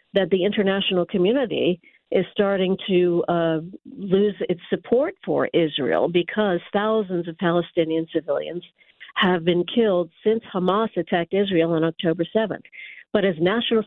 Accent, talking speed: American, 135 wpm